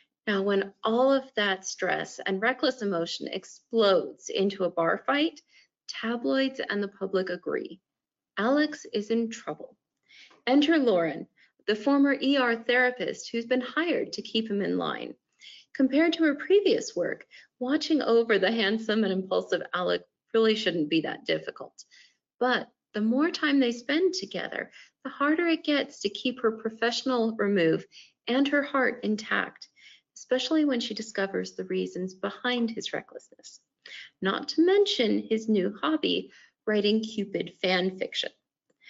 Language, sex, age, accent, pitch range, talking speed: English, female, 30-49, American, 200-275 Hz, 145 wpm